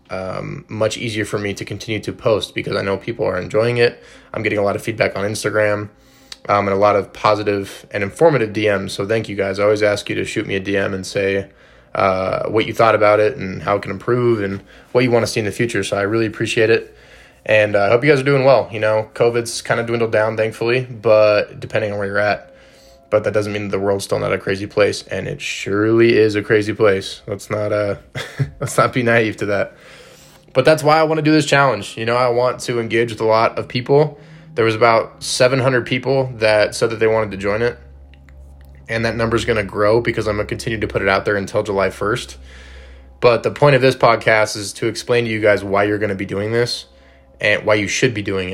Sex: male